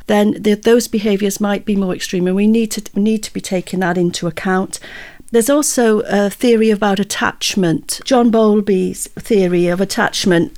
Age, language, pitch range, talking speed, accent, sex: 40-59, English, 190-225 Hz, 175 wpm, British, female